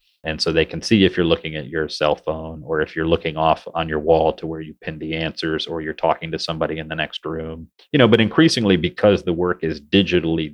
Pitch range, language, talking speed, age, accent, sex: 80-90 Hz, English, 250 wpm, 30-49, American, male